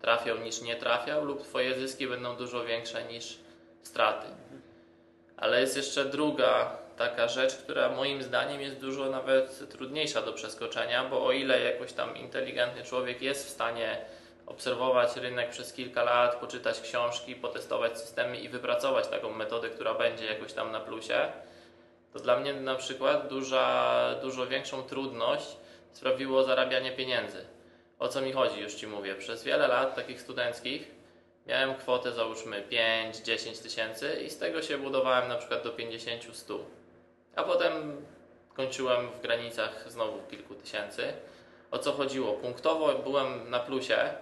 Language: Polish